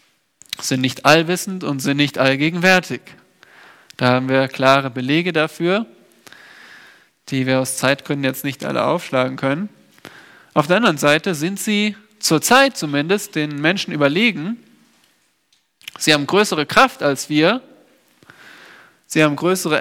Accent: German